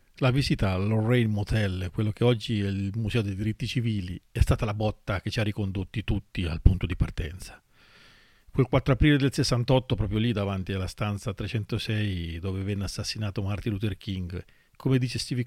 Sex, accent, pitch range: male, native, 95-120 Hz